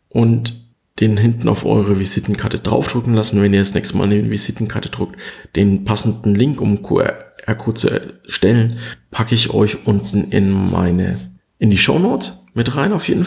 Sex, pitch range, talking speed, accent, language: male, 100-130 Hz, 165 wpm, German, German